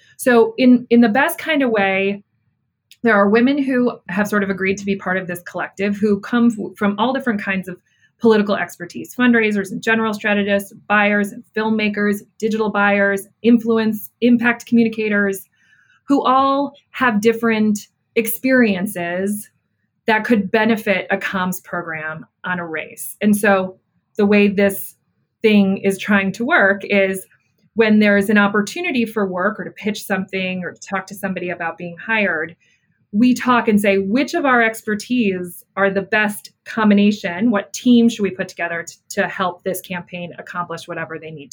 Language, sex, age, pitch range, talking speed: English, female, 30-49, 195-230 Hz, 165 wpm